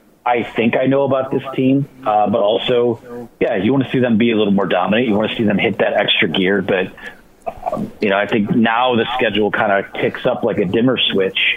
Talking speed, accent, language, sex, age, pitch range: 245 wpm, American, English, male, 30-49, 105-135 Hz